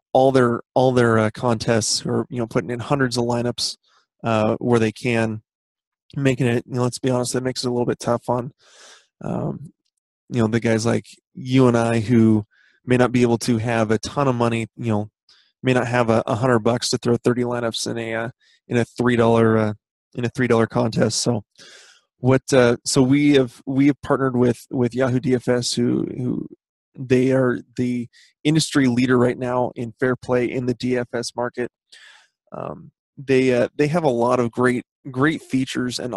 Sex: male